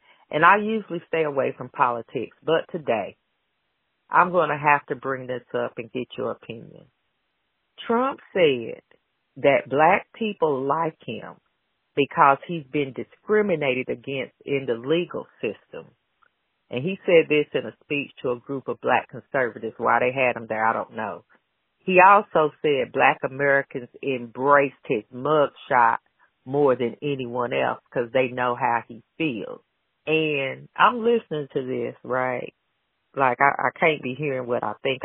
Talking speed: 155 wpm